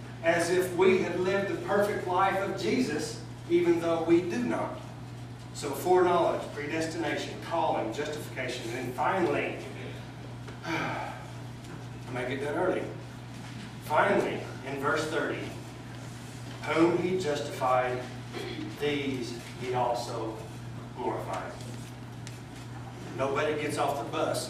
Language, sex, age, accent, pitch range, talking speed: English, male, 40-59, American, 125-155 Hz, 110 wpm